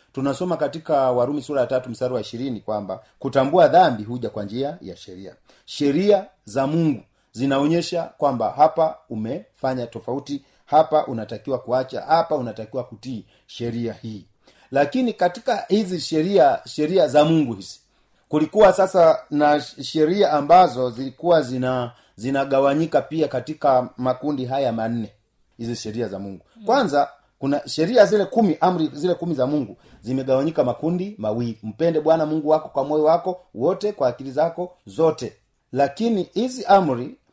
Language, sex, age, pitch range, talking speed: Swahili, male, 40-59, 125-165 Hz, 140 wpm